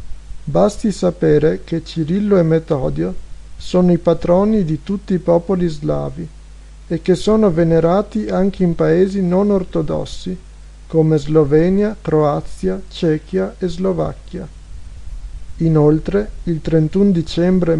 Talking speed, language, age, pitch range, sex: 110 wpm, Italian, 50-69, 155-185 Hz, male